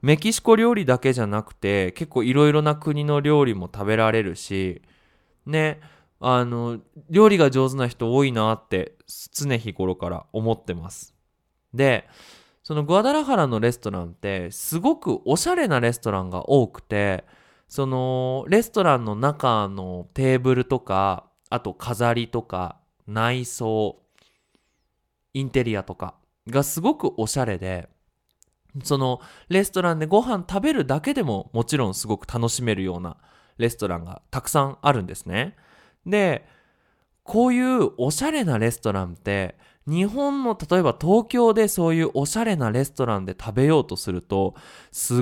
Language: Japanese